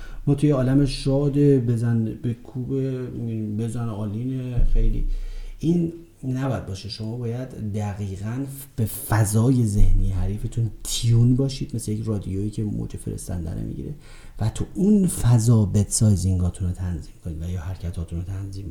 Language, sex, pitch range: Persian, male, 95-115 Hz